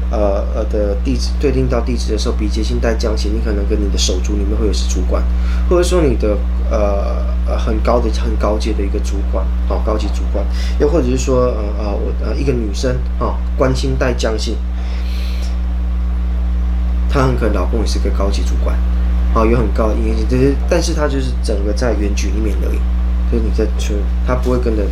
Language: Chinese